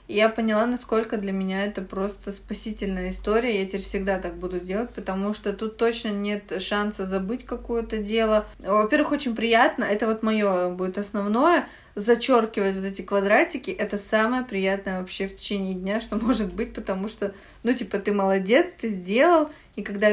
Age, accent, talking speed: 20-39, native, 165 wpm